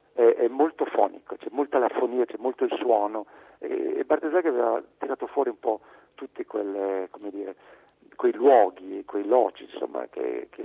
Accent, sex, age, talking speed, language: native, male, 50-69, 160 wpm, Italian